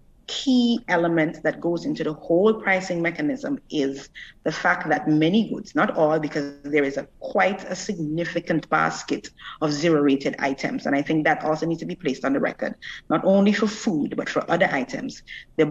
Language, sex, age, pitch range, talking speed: English, female, 30-49, 150-195 Hz, 190 wpm